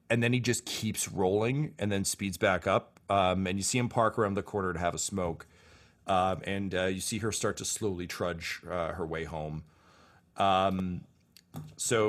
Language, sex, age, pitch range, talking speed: English, male, 40-59, 90-120 Hz, 200 wpm